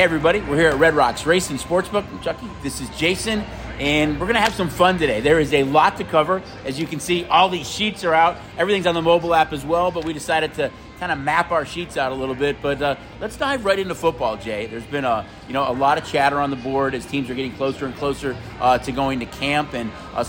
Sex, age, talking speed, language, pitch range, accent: male, 30-49, 265 wpm, English, 125-160 Hz, American